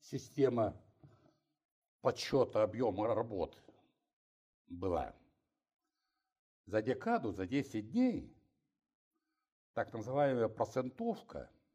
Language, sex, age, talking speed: Russian, male, 60-79, 65 wpm